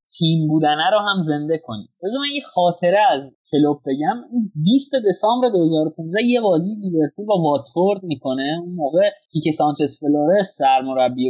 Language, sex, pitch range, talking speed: Persian, male, 155-225 Hz, 145 wpm